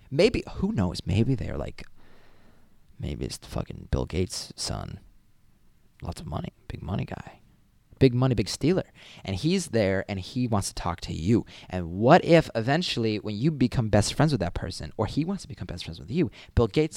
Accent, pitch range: American, 95-140 Hz